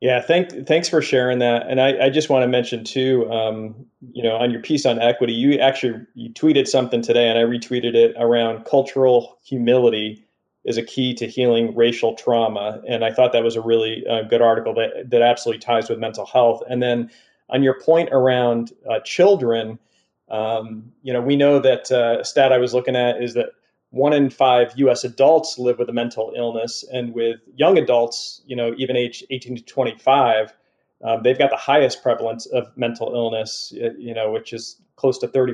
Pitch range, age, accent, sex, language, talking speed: 115-130 Hz, 30-49, American, male, English, 200 wpm